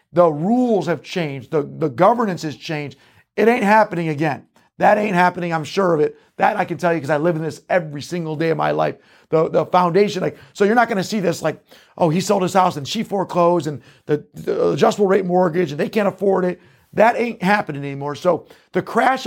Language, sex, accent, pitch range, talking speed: English, male, American, 165-200 Hz, 230 wpm